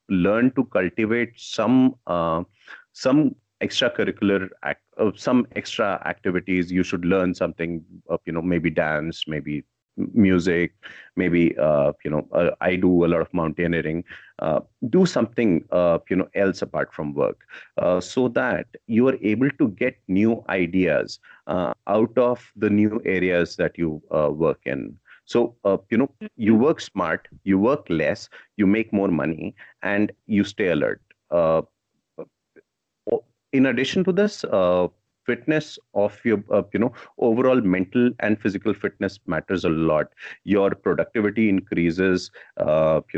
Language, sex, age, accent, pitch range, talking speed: English, male, 30-49, Indian, 85-110 Hz, 145 wpm